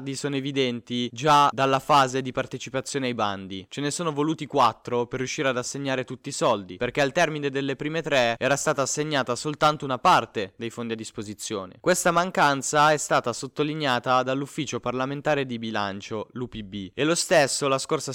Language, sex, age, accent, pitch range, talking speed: Italian, male, 20-39, native, 120-140 Hz, 170 wpm